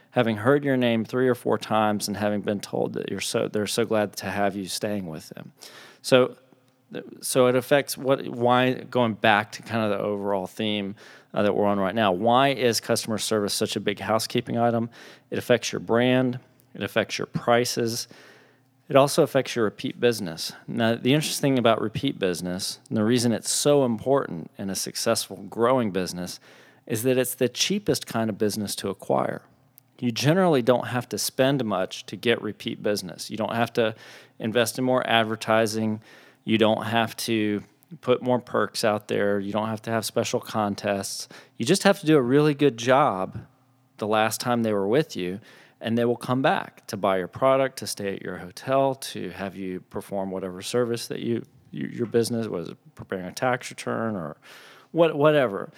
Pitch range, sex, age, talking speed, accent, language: 105-130 Hz, male, 40-59, 190 wpm, American, English